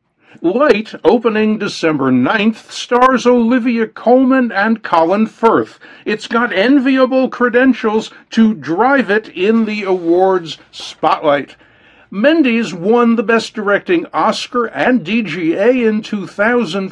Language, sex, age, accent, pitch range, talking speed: English, male, 60-79, American, 190-245 Hz, 110 wpm